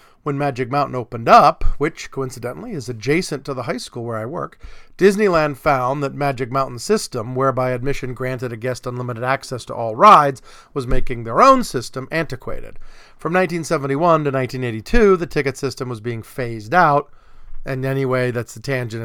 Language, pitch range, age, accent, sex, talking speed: English, 125-165 Hz, 40-59, American, male, 170 wpm